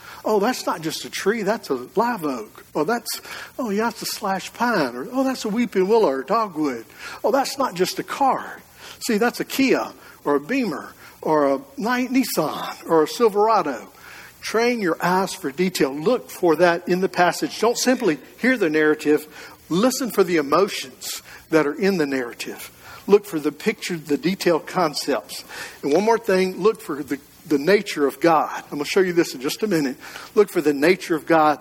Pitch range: 155-215 Hz